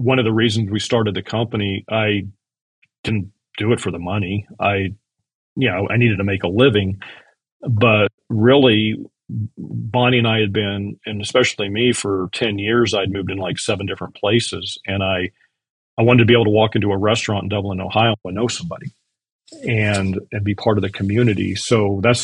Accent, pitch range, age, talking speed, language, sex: American, 95-110 Hz, 40-59, 190 wpm, English, male